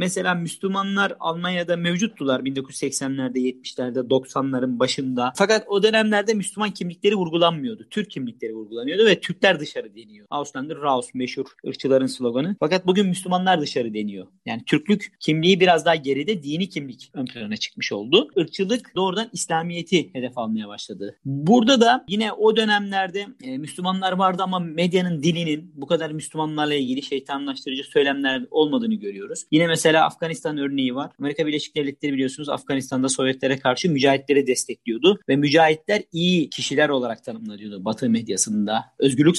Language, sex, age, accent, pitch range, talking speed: Turkish, male, 40-59, native, 130-185 Hz, 135 wpm